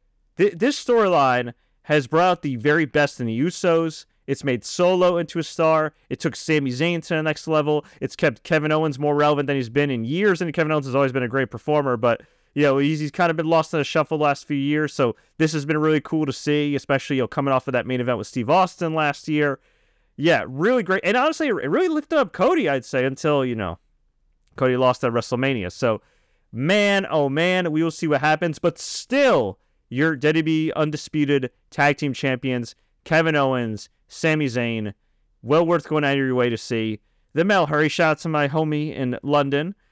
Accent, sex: American, male